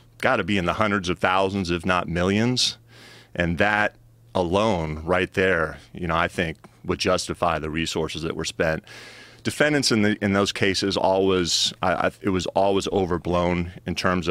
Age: 30-49